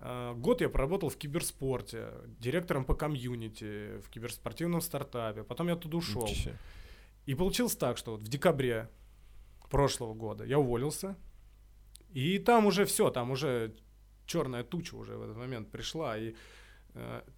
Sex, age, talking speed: male, 20-39, 140 wpm